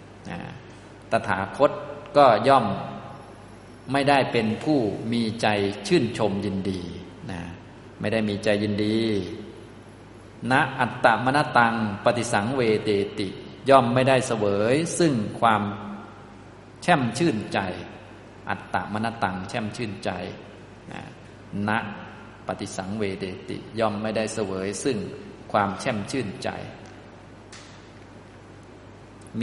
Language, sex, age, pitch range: Thai, male, 20-39, 100-120 Hz